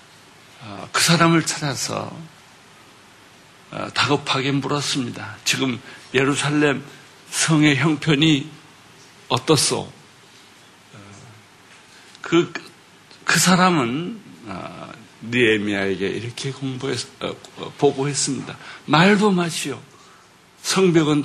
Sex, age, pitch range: male, 60-79, 130-160 Hz